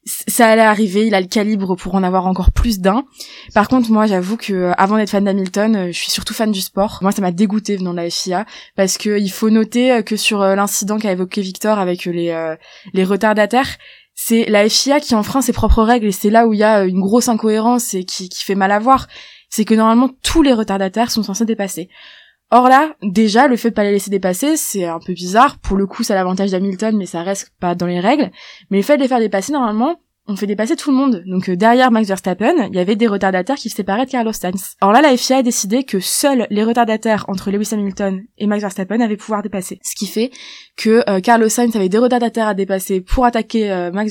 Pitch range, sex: 195-235 Hz, female